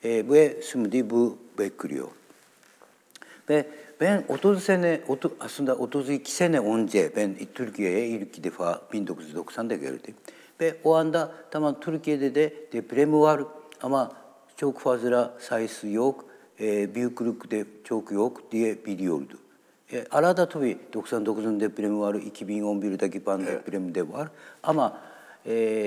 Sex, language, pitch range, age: male, Turkish, 110-145 Hz, 60-79